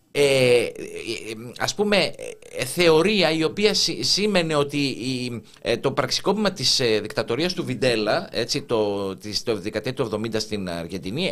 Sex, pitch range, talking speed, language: male, 110-170 Hz, 115 wpm, Greek